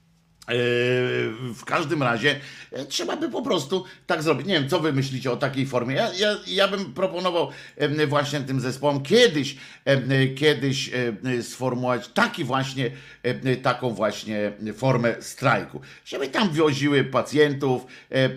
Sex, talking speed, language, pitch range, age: male, 120 wpm, Polish, 120-150 Hz, 50-69